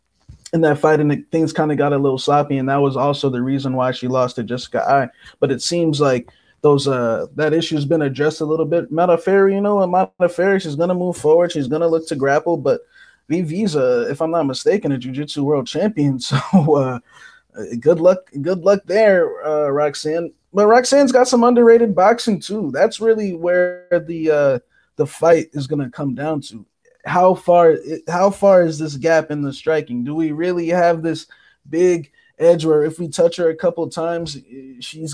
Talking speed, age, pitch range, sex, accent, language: 205 wpm, 20-39, 145-175 Hz, male, American, English